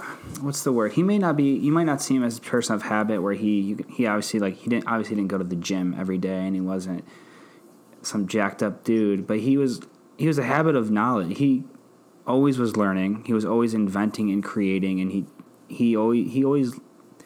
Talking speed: 225 wpm